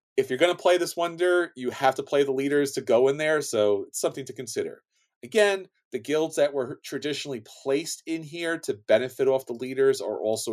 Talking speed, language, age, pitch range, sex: 215 wpm, English, 40-59, 125-170 Hz, male